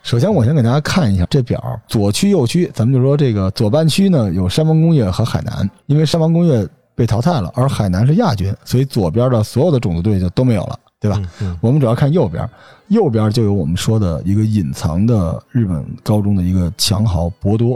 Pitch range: 100-135 Hz